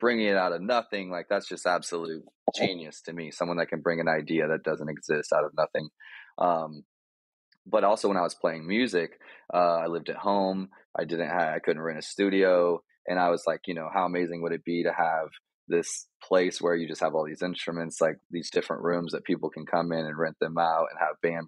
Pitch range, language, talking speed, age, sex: 80-90 Hz, English, 230 wpm, 20-39, male